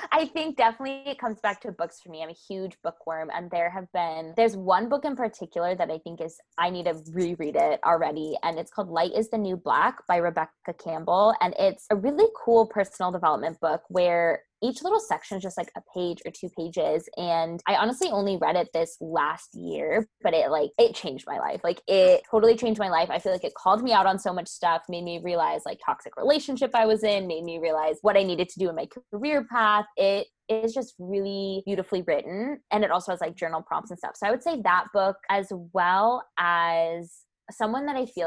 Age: 20-39